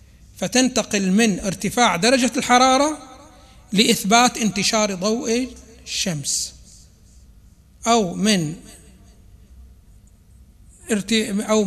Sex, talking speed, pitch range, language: male, 60 wpm, 170-225 Hz, Arabic